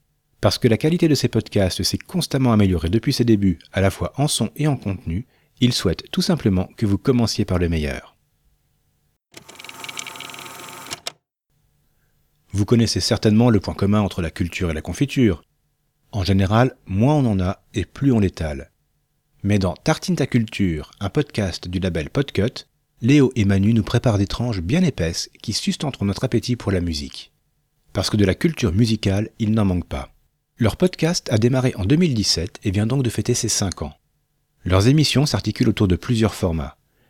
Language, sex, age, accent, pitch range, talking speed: French, male, 40-59, French, 95-135 Hz, 180 wpm